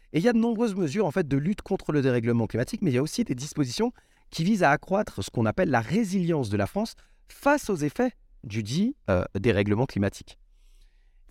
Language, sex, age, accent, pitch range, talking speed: French, male, 30-49, French, 115-185 Hz, 230 wpm